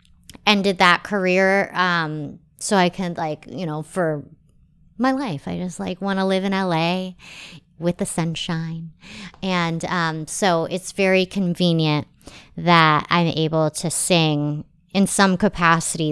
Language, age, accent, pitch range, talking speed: English, 30-49, American, 165-200 Hz, 140 wpm